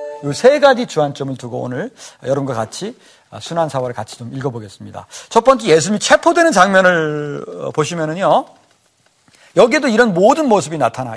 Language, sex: Korean, male